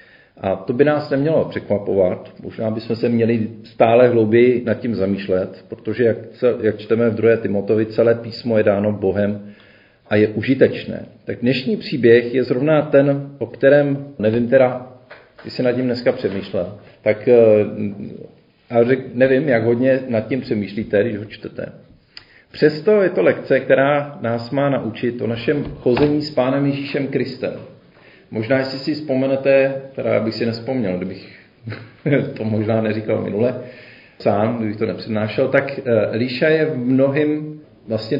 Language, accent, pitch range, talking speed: Czech, native, 110-135 Hz, 150 wpm